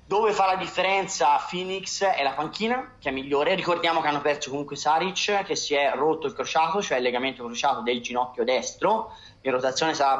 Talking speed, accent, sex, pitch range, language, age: 195 wpm, native, male, 130-160 Hz, Italian, 20-39